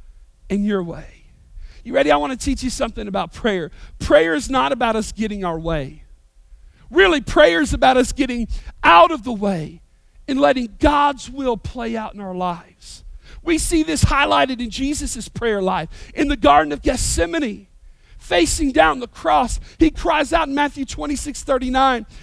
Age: 40-59